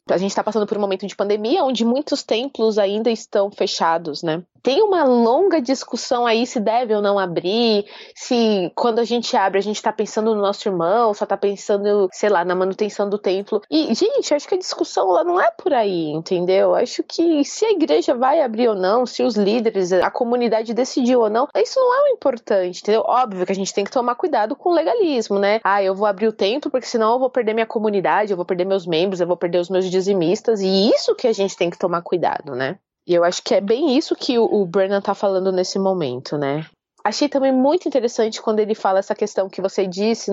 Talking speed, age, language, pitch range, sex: 230 wpm, 20-39, Portuguese, 190-245 Hz, female